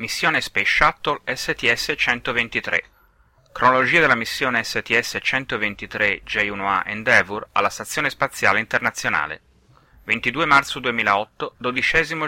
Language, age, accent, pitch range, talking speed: Italian, 30-49, native, 100-140 Hz, 90 wpm